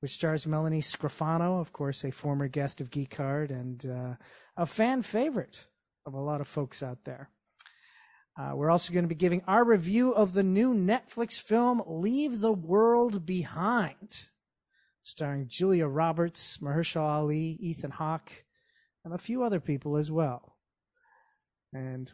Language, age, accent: English, 30-49, American